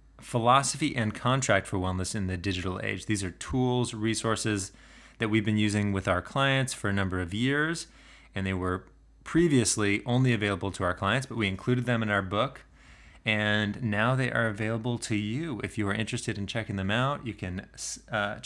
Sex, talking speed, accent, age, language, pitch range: male, 190 wpm, American, 30-49, English, 95-120 Hz